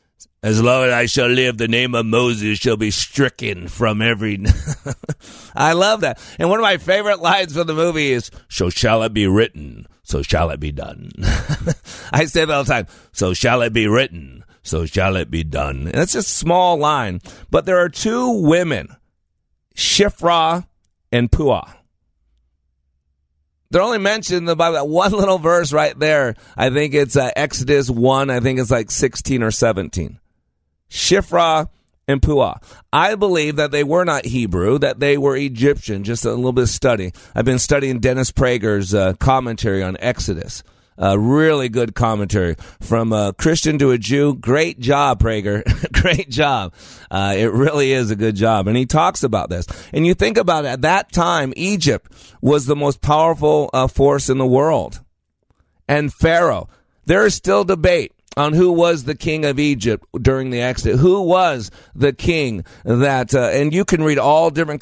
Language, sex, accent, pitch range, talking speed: English, male, American, 105-150 Hz, 180 wpm